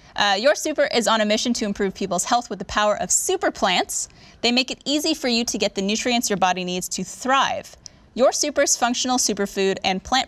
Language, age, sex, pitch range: English, 10-29, female, 200-265 Hz